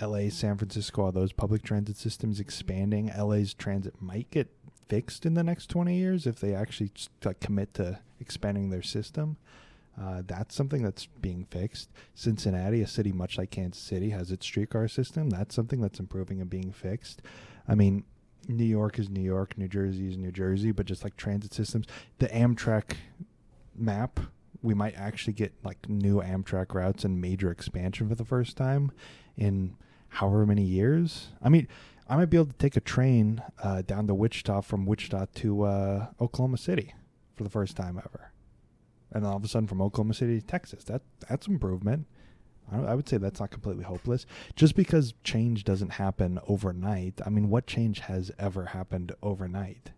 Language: English